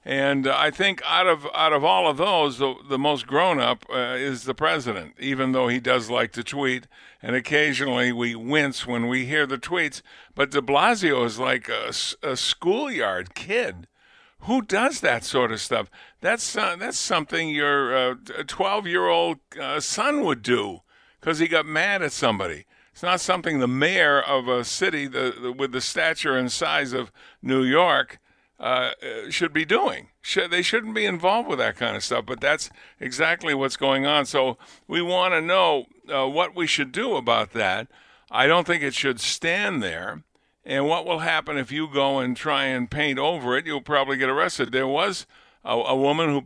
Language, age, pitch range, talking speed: English, 50-69, 130-155 Hz, 185 wpm